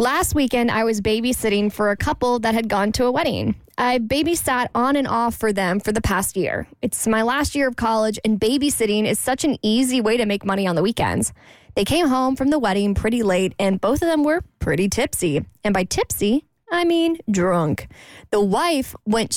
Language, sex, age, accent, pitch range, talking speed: English, female, 10-29, American, 205-300 Hz, 210 wpm